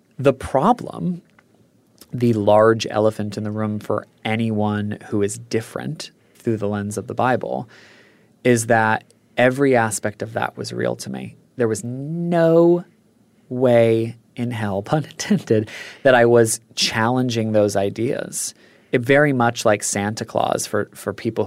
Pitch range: 105-125 Hz